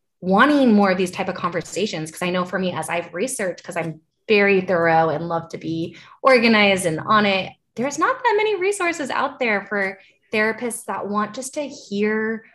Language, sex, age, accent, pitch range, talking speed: English, female, 20-39, American, 175-220 Hz, 195 wpm